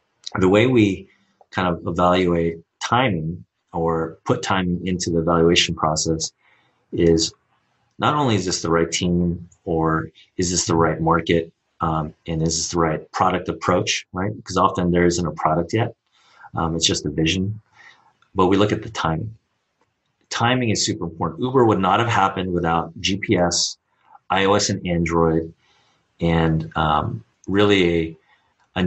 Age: 30-49